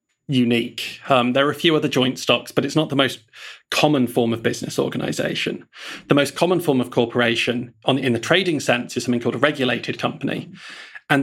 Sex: male